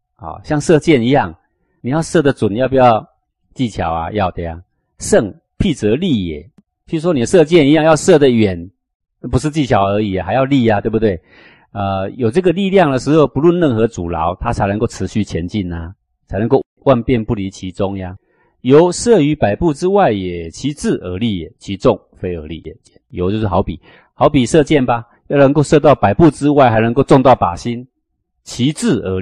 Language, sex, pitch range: Chinese, male, 90-130 Hz